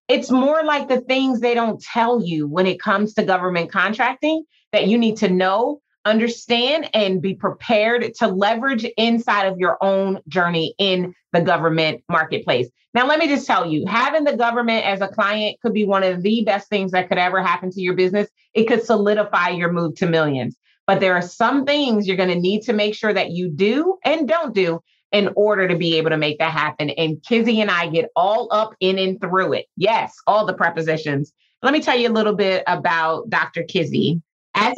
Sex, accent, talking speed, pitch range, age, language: female, American, 210 wpm, 170-225 Hz, 30-49, English